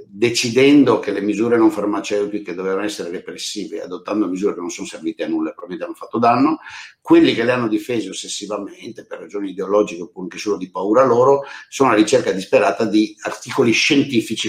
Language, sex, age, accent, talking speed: Italian, male, 60-79, native, 180 wpm